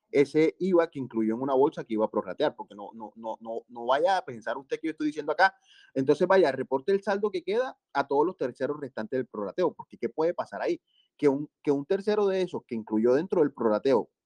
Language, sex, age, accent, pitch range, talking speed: Spanish, male, 30-49, Venezuelan, 115-185 Hz, 240 wpm